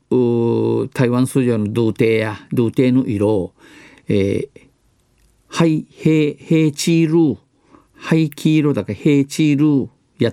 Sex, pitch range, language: male, 110-155 Hz, Japanese